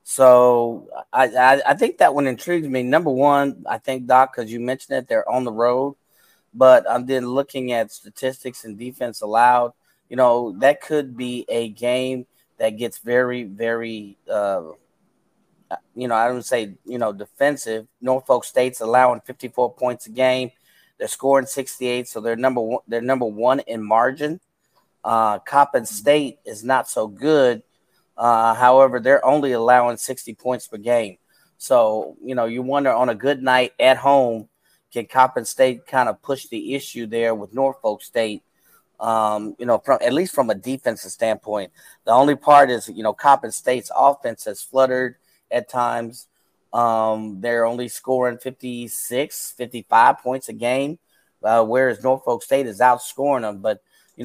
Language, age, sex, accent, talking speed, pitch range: English, 30-49, male, American, 165 wpm, 115-130 Hz